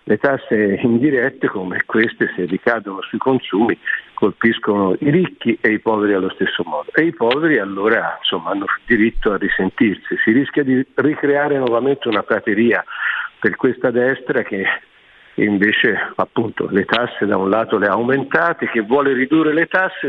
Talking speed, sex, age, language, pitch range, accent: 160 wpm, male, 50-69, Italian, 105-160 Hz, native